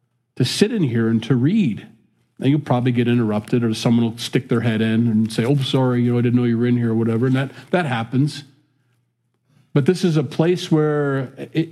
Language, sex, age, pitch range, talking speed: English, male, 40-59, 120-140 Hz, 230 wpm